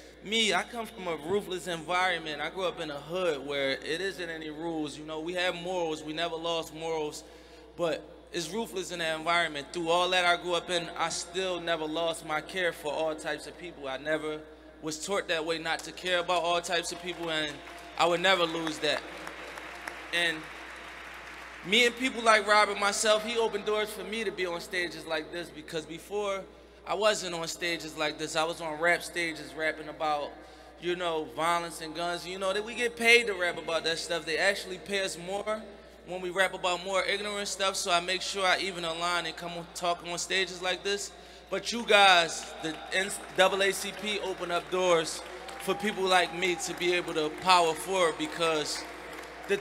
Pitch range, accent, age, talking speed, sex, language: 160-190 Hz, American, 20-39, 200 wpm, male, English